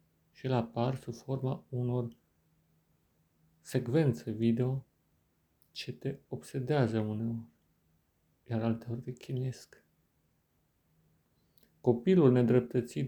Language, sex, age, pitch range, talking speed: Romanian, male, 40-59, 115-130 Hz, 85 wpm